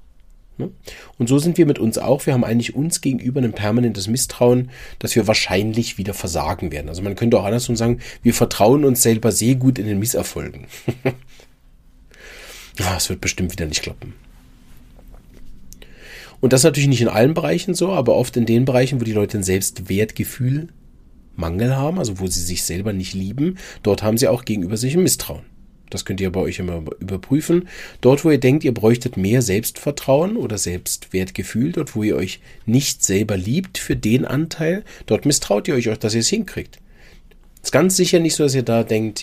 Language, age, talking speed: German, 30-49, 190 wpm